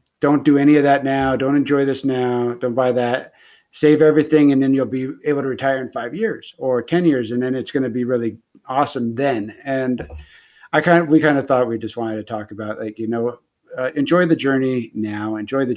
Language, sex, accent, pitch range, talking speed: English, male, American, 115-135 Hz, 230 wpm